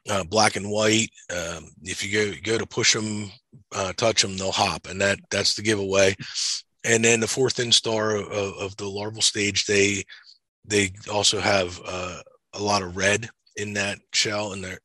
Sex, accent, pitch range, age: male, American, 95-110 Hz, 30-49